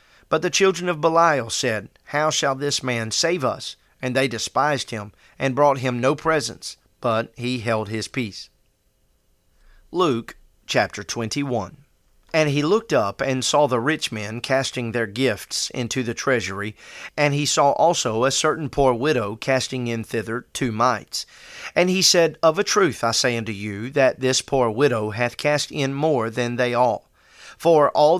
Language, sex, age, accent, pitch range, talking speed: English, male, 40-59, American, 115-150 Hz, 170 wpm